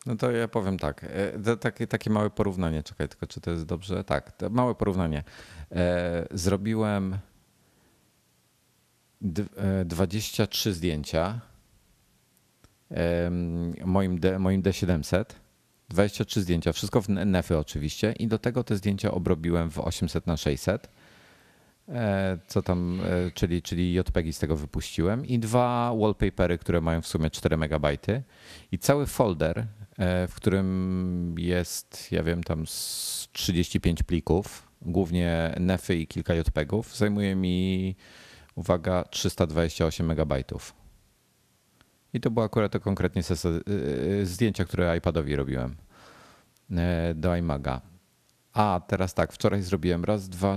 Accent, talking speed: native, 120 wpm